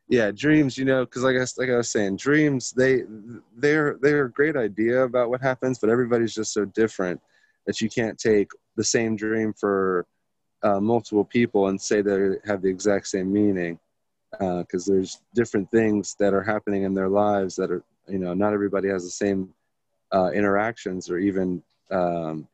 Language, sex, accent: English, male, American